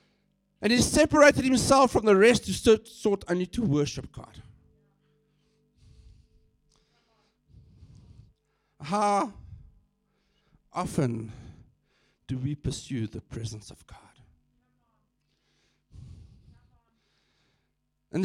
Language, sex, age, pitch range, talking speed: English, male, 50-69, 130-190 Hz, 75 wpm